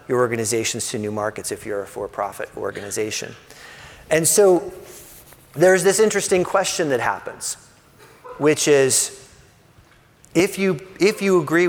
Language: English